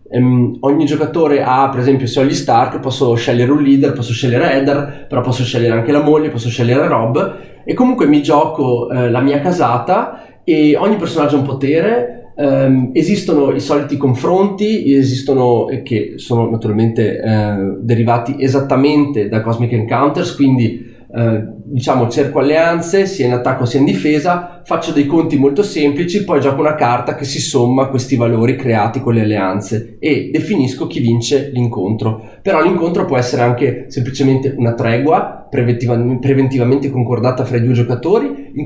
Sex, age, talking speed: male, 20-39, 165 wpm